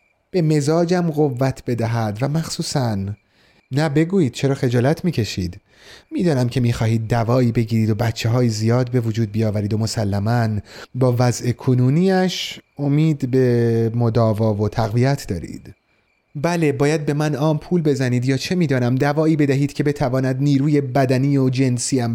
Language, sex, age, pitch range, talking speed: Persian, male, 30-49, 110-145 Hz, 140 wpm